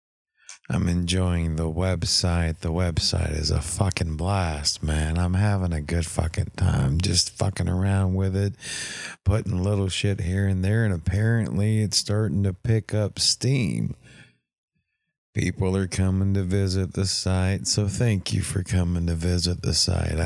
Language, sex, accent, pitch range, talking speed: English, male, American, 90-105 Hz, 155 wpm